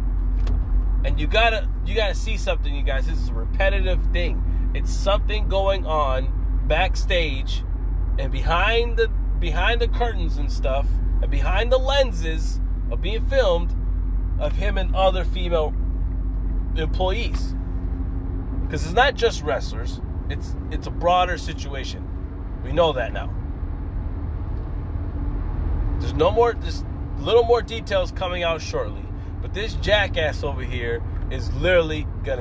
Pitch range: 85-95 Hz